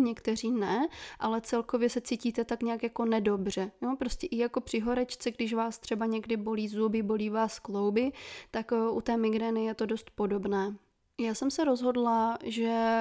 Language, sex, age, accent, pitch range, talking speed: Czech, female, 20-39, native, 215-240 Hz, 170 wpm